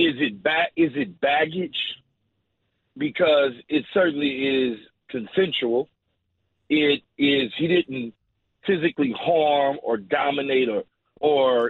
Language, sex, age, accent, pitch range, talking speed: English, male, 40-59, American, 125-150 Hz, 110 wpm